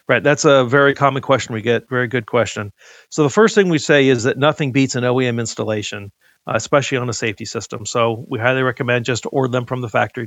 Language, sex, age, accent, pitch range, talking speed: English, male, 50-69, American, 120-140 Hz, 230 wpm